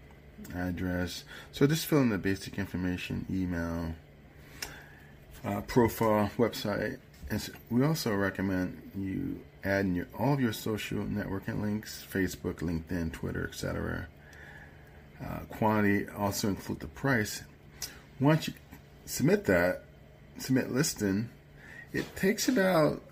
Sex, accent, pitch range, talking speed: male, American, 85-115 Hz, 120 wpm